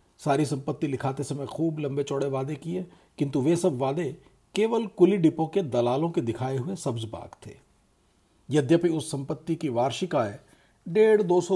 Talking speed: 170 wpm